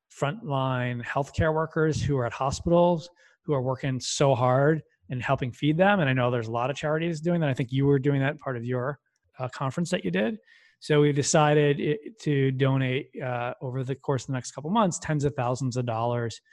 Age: 20-39